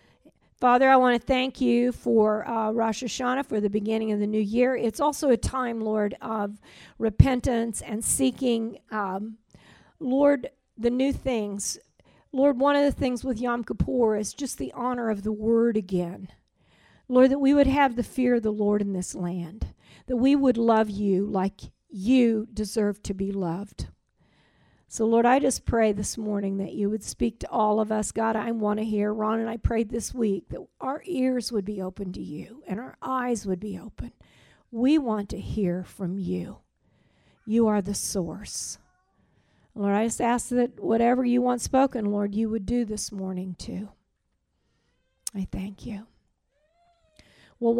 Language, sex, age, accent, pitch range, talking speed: English, female, 50-69, American, 210-255 Hz, 175 wpm